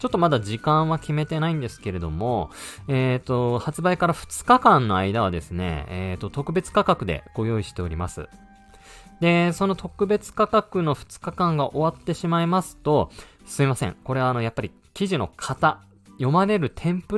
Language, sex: Japanese, male